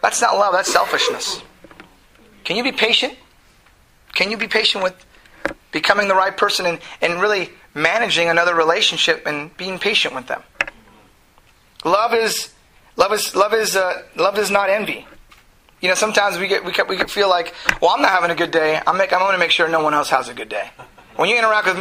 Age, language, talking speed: 30-49, English, 205 wpm